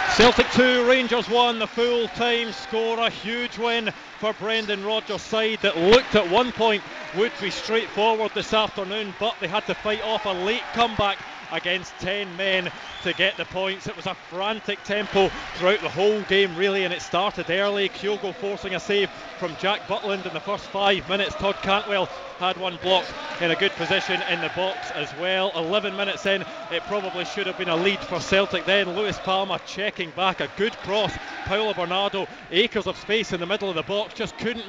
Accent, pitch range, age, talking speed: British, 185-215 Hz, 20-39, 195 wpm